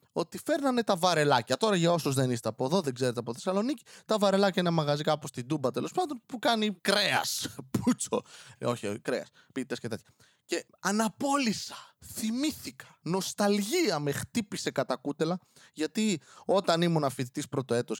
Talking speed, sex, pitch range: 155 wpm, male, 125-200 Hz